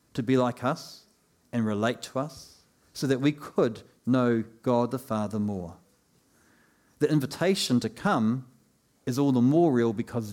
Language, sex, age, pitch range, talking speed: English, male, 50-69, 105-135 Hz, 155 wpm